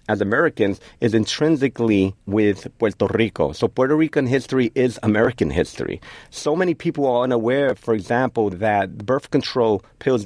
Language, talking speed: English, 145 wpm